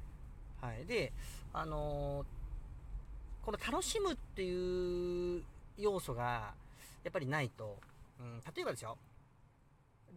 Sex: male